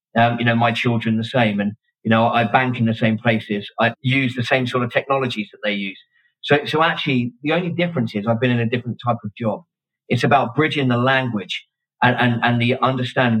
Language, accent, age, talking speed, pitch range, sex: English, British, 40-59, 230 wpm, 110-130 Hz, male